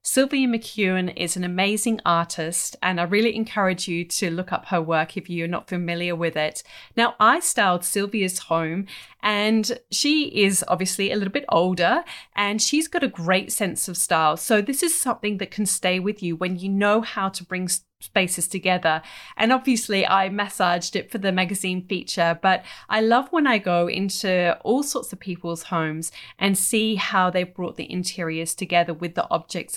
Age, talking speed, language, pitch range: 30-49, 185 wpm, English, 175-215 Hz